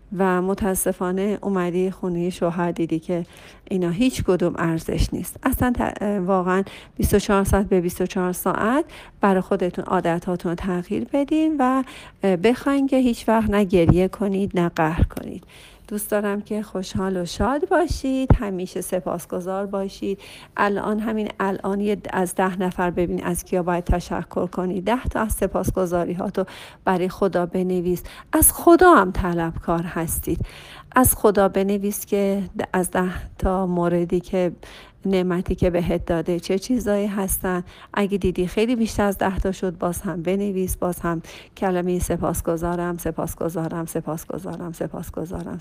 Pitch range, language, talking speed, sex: 180-210 Hz, Persian, 140 wpm, female